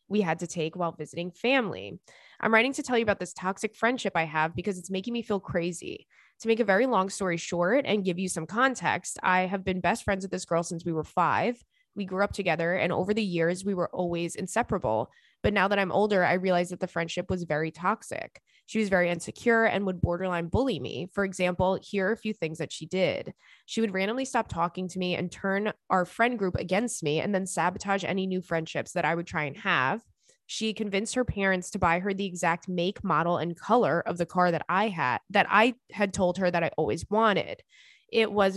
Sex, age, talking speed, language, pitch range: female, 20-39, 225 wpm, English, 170-205 Hz